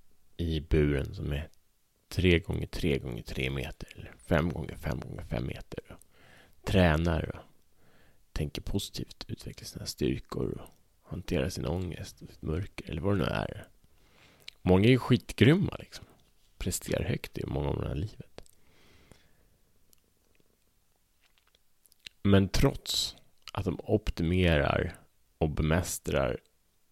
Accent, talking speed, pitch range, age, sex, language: Norwegian, 130 wpm, 75-95 Hz, 30-49, male, Swedish